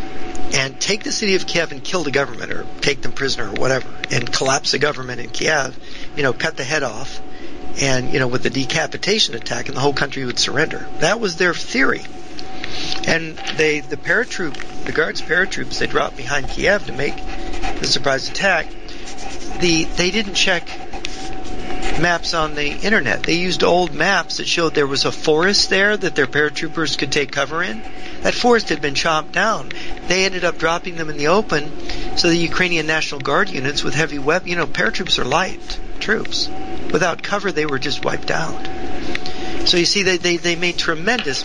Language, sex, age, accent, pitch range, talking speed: English, male, 50-69, American, 145-195 Hz, 190 wpm